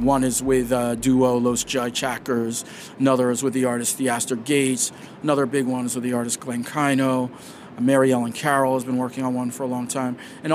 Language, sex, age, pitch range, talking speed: English, male, 40-59, 125-145 Hz, 210 wpm